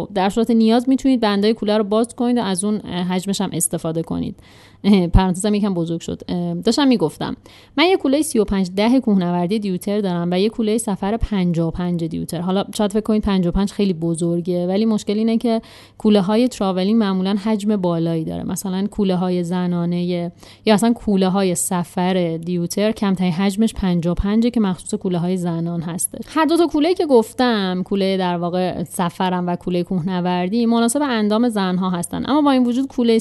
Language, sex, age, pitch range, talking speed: Persian, female, 30-49, 180-235 Hz, 180 wpm